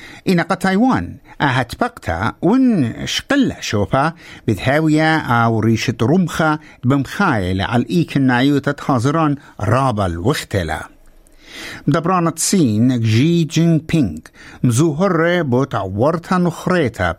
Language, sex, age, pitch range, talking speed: English, male, 60-79, 115-165 Hz, 100 wpm